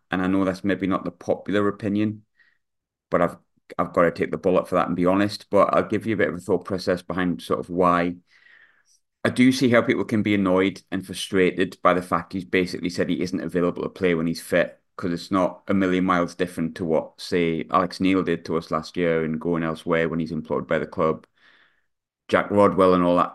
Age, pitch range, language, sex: 30-49, 90-100 Hz, English, male